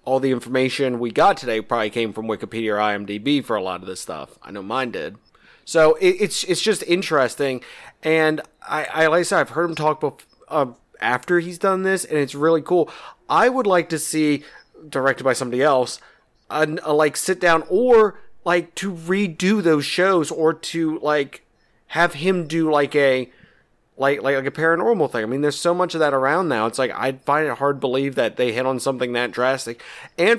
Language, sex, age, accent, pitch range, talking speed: English, male, 30-49, American, 125-160 Hz, 215 wpm